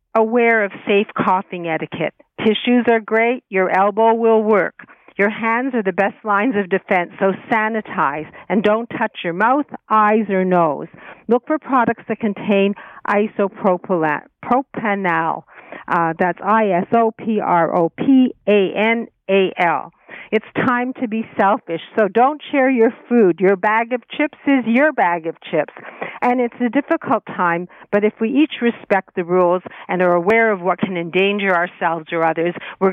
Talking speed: 145 wpm